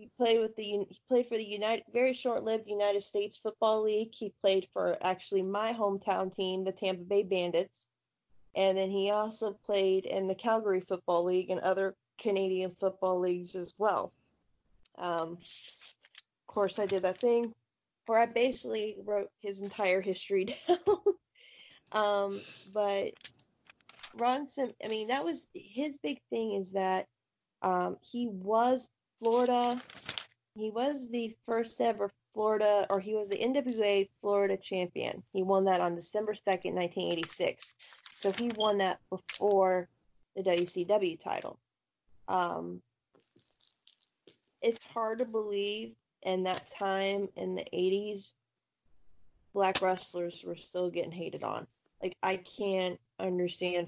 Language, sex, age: English, female, 20-39